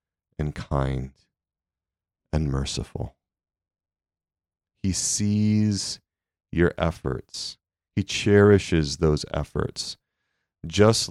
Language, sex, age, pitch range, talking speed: English, male, 30-49, 85-100 Hz, 70 wpm